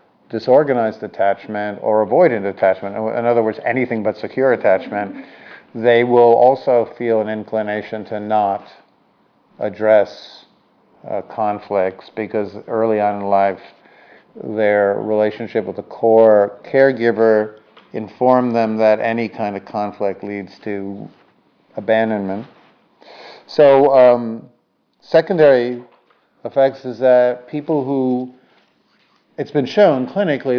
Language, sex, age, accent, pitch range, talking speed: English, male, 50-69, American, 105-125 Hz, 110 wpm